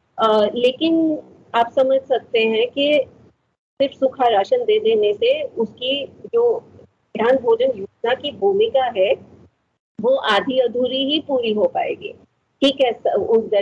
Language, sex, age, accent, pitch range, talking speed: Hindi, female, 30-49, native, 200-275 Hz, 130 wpm